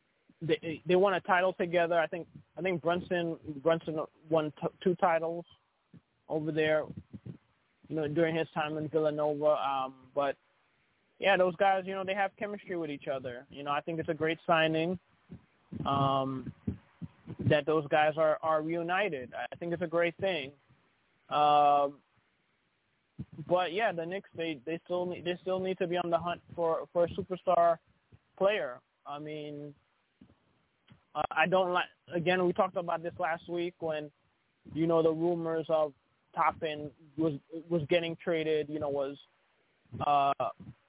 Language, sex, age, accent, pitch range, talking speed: English, male, 20-39, American, 155-180 Hz, 160 wpm